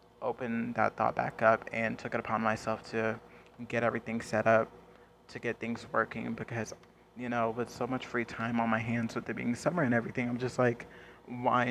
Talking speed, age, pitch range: 205 wpm, 20-39, 115-120 Hz